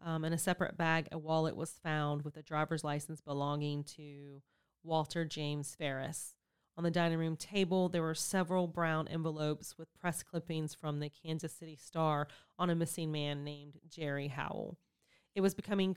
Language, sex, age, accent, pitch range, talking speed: English, female, 30-49, American, 155-185 Hz, 175 wpm